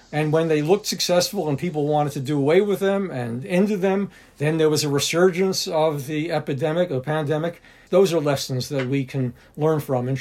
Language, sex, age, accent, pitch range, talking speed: English, male, 50-69, American, 140-180 Hz, 205 wpm